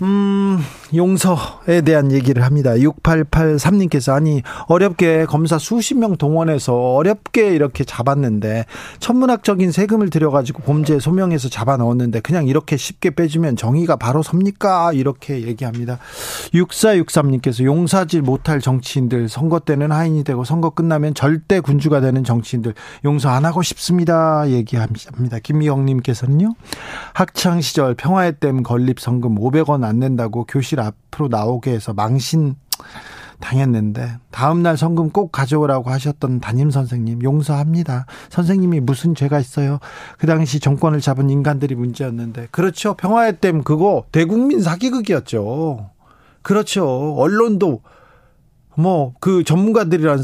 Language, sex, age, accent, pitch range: Korean, male, 40-59, native, 130-170 Hz